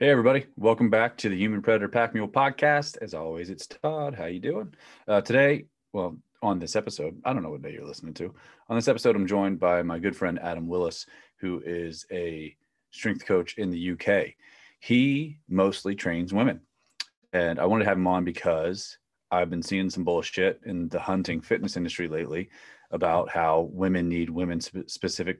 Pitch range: 85-105 Hz